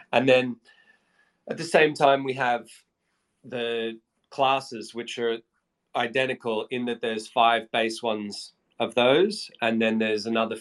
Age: 30-49